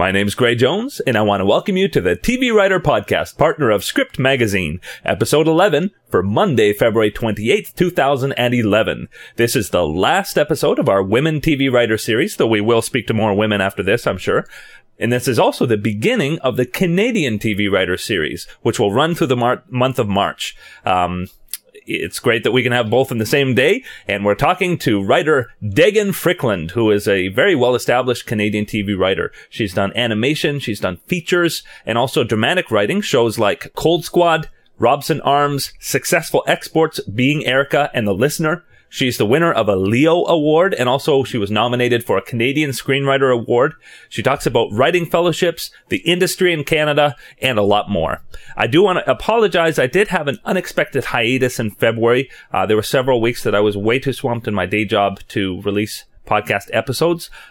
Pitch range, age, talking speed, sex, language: 110-155 Hz, 30-49, 190 wpm, male, English